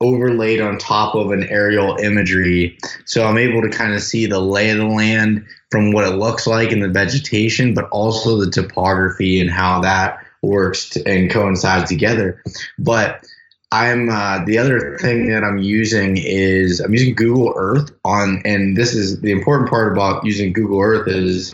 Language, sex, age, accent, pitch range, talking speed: English, male, 20-39, American, 100-115 Hz, 180 wpm